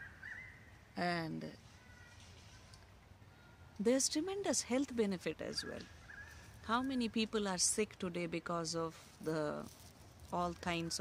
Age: 30-49